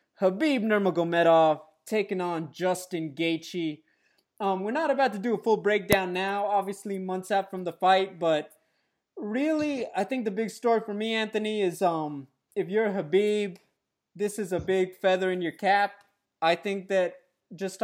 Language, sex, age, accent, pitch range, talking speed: English, male, 20-39, American, 170-210 Hz, 165 wpm